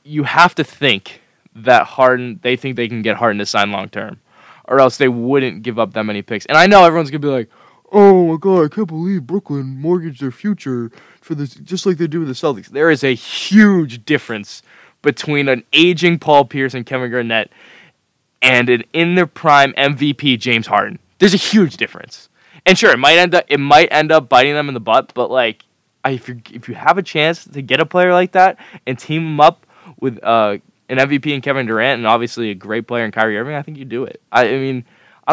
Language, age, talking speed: English, 20-39, 230 wpm